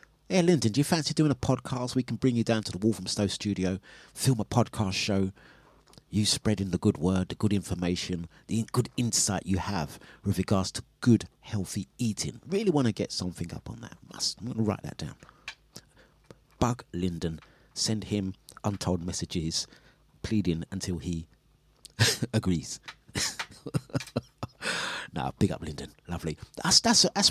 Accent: British